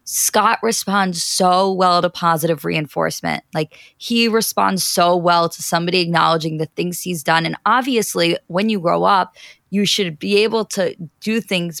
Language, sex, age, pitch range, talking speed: English, female, 20-39, 170-210 Hz, 165 wpm